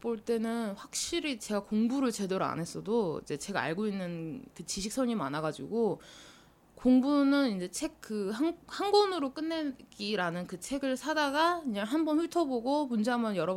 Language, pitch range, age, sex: Korean, 185-280 Hz, 20-39, female